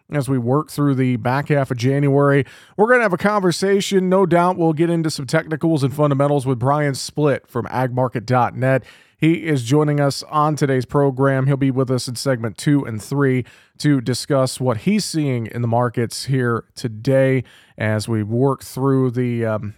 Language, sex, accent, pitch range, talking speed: English, male, American, 125-155 Hz, 180 wpm